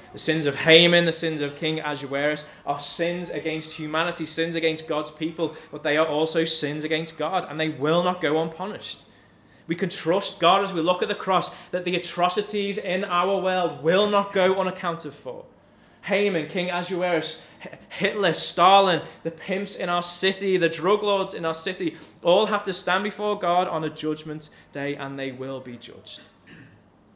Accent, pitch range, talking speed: British, 130-175 Hz, 180 wpm